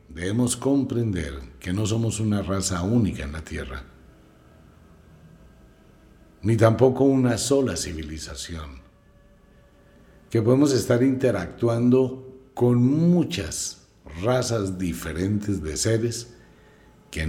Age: 60-79